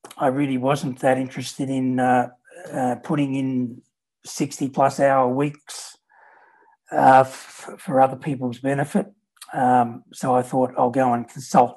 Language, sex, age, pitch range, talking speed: English, male, 60-79, 125-150 Hz, 125 wpm